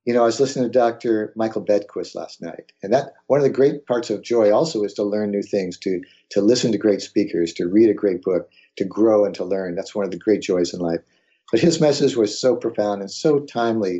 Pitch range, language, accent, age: 90-130 Hz, English, American, 50-69